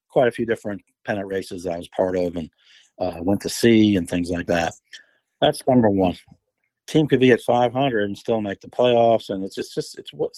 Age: 50-69